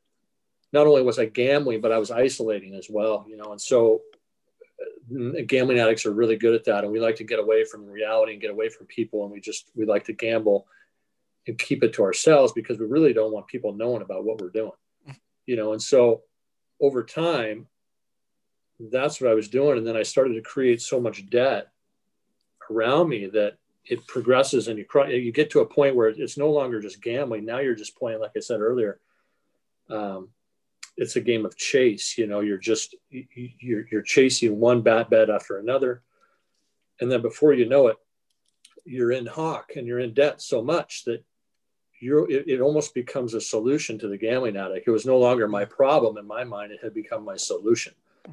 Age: 40-59